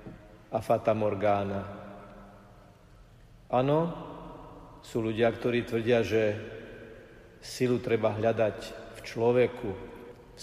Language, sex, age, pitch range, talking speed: Slovak, male, 50-69, 110-125 Hz, 85 wpm